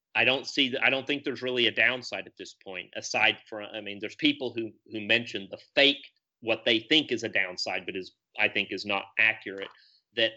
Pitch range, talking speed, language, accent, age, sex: 115-145 Hz, 220 wpm, English, American, 40-59, male